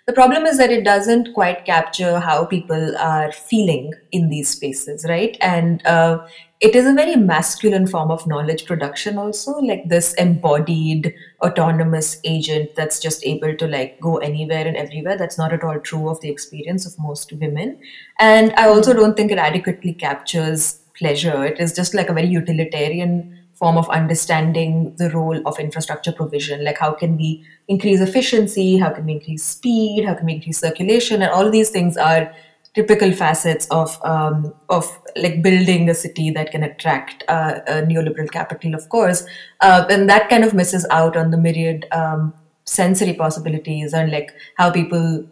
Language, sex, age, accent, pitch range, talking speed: English, female, 20-39, Indian, 160-195 Hz, 175 wpm